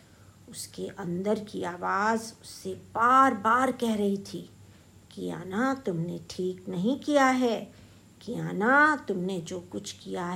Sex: female